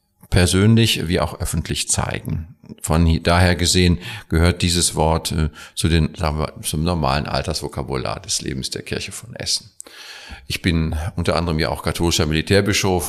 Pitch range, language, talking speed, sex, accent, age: 80-95 Hz, German, 145 wpm, male, German, 50-69